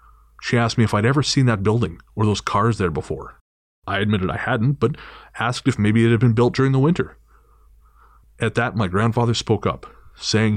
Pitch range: 95-120 Hz